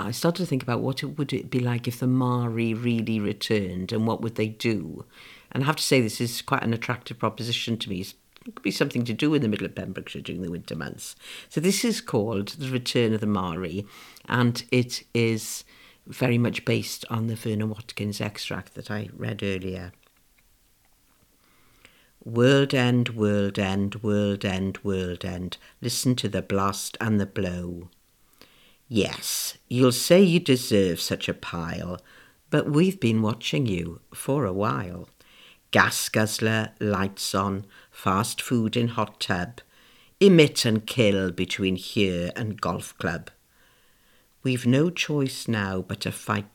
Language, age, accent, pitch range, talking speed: English, 60-79, British, 100-125 Hz, 165 wpm